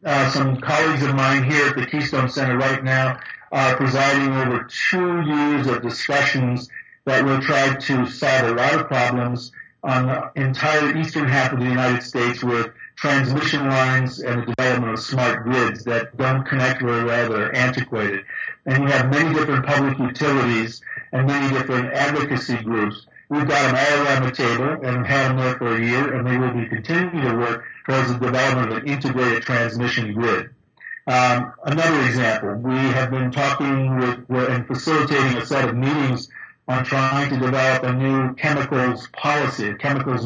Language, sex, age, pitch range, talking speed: English, male, 50-69, 125-140 Hz, 175 wpm